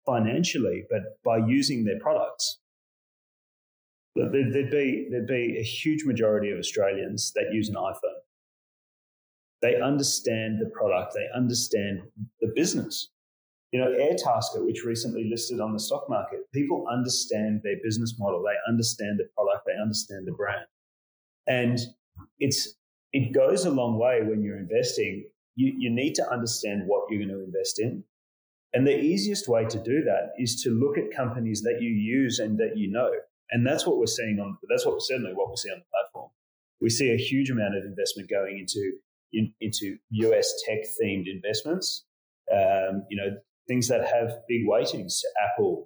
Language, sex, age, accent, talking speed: English, male, 30-49, Australian, 170 wpm